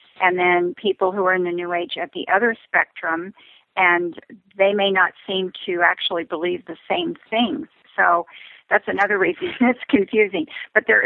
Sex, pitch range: female, 180-205 Hz